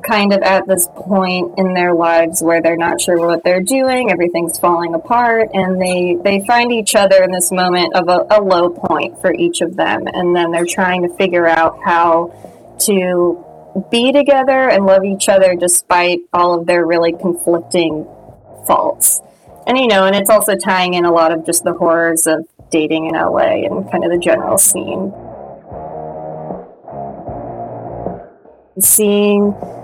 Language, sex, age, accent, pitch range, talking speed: English, female, 20-39, American, 175-205 Hz, 165 wpm